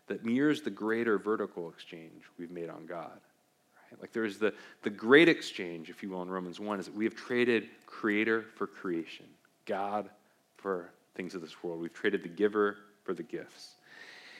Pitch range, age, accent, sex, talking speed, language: 100-135 Hz, 40-59, American, male, 180 wpm, English